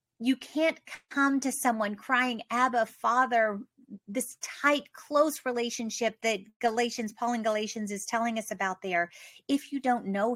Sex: female